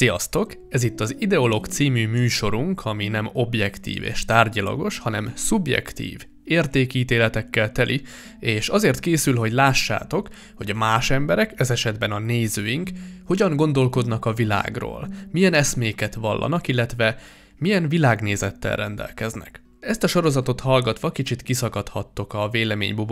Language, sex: Hungarian, male